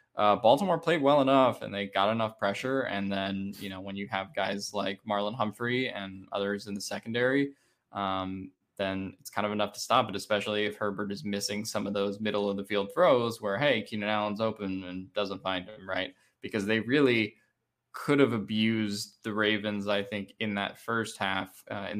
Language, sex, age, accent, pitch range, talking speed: English, male, 10-29, American, 100-110 Hz, 195 wpm